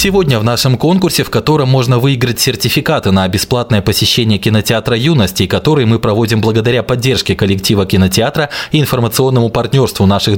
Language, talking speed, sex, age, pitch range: Russian, 145 wpm, male, 20-39, 95-130 Hz